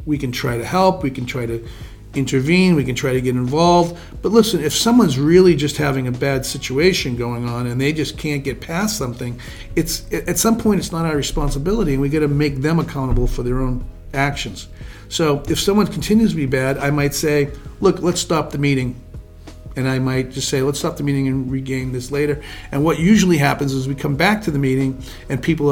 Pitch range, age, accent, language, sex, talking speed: 125-155 Hz, 50-69, American, English, male, 220 wpm